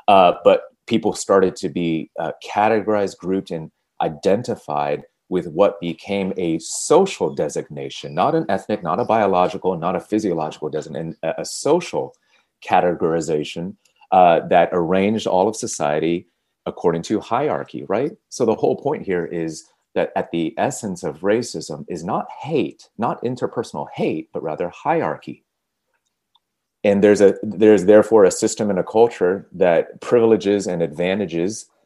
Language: English